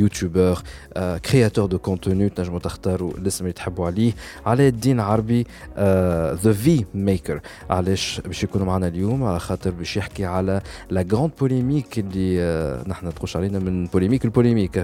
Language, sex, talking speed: Arabic, male, 160 wpm